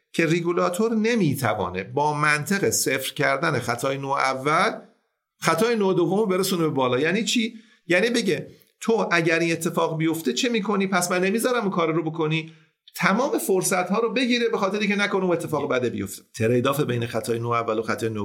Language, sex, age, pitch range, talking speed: Persian, male, 50-69, 135-200 Hz, 180 wpm